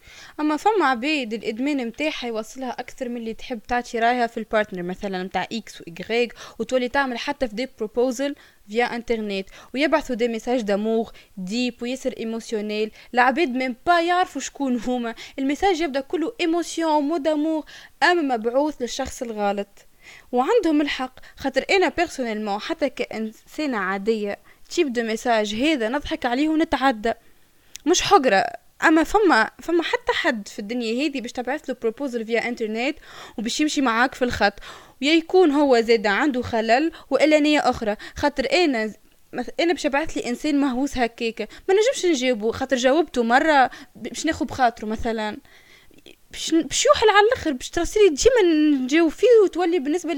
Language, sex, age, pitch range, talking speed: Arabic, female, 20-39, 240-320 Hz, 145 wpm